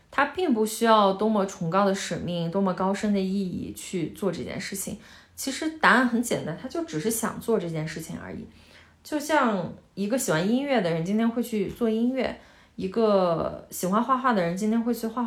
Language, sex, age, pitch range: Chinese, female, 20-39, 180-225 Hz